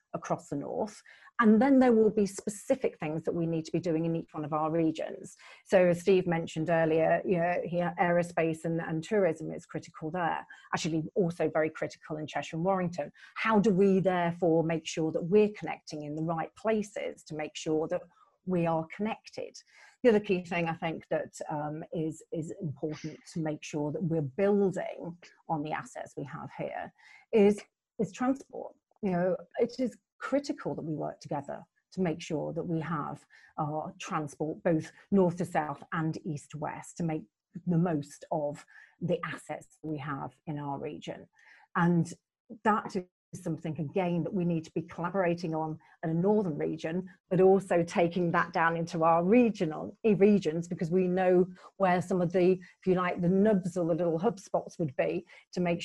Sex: female